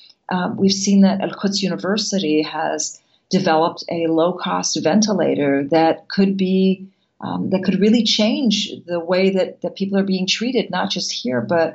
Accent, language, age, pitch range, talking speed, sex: American, English, 40-59, 165-200 Hz, 165 wpm, female